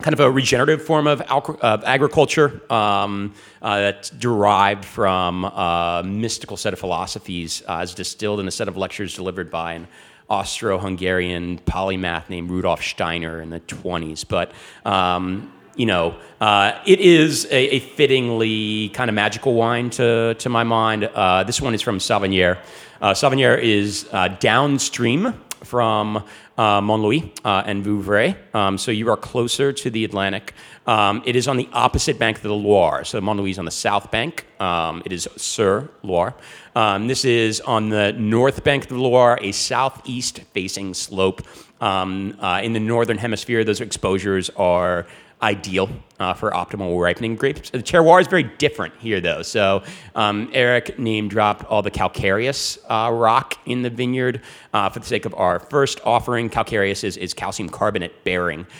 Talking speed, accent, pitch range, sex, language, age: 160 wpm, American, 95-125 Hz, male, English, 40-59